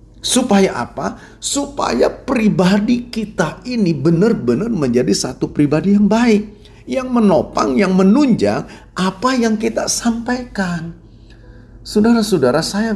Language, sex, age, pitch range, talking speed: Indonesian, male, 40-59, 115-165 Hz, 100 wpm